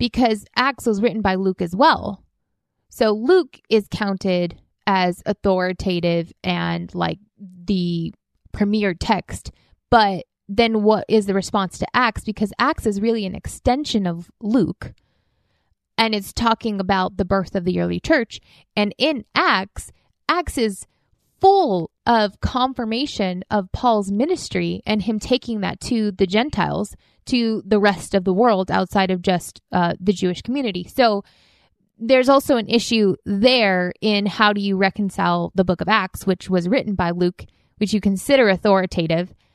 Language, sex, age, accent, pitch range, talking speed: English, female, 20-39, American, 185-225 Hz, 150 wpm